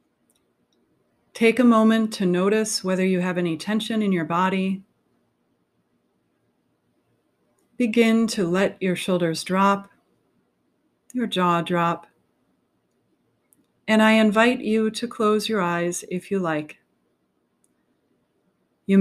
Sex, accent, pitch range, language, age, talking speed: female, American, 175-215 Hz, English, 40-59, 105 wpm